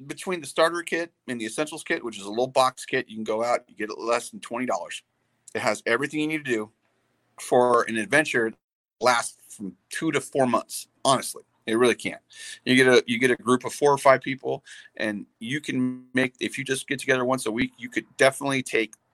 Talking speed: 225 wpm